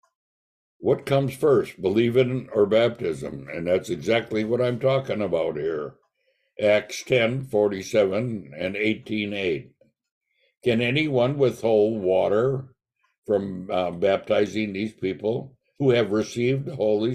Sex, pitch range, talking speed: male, 105-135 Hz, 115 wpm